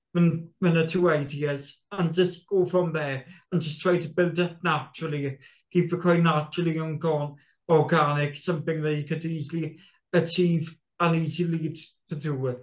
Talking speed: 150 wpm